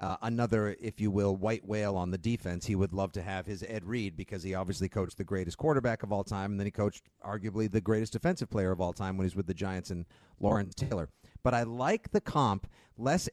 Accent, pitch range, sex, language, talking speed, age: American, 100-140 Hz, male, English, 250 wpm, 40-59